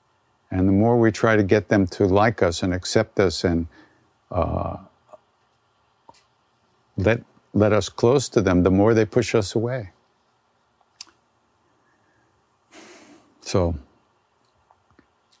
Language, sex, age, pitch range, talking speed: English, male, 50-69, 95-120 Hz, 115 wpm